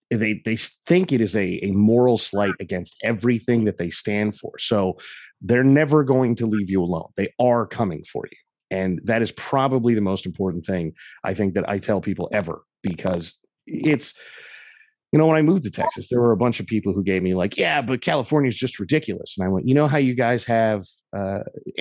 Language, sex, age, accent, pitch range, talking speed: English, male, 30-49, American, 95-125 Hz, 215 wpm